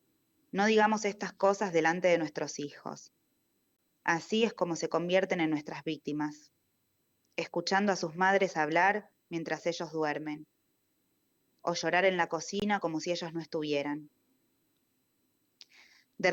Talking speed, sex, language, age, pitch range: 130 wpm, female, Spanish, 20-39, 155-195 Hz